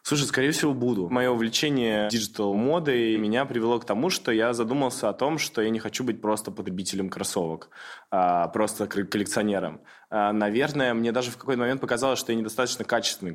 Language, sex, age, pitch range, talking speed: Russian, male, 20-39, 95-110 Hz, 170 wpm